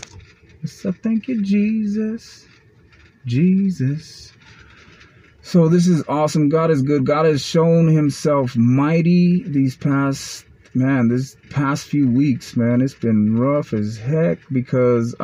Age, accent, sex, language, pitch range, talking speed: 30-49, American, male, English, 115-145 Hz, 120 wpm